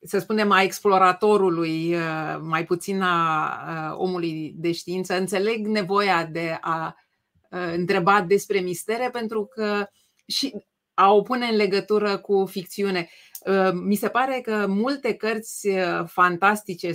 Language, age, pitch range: Romanian, 30-49, 180-220 Hz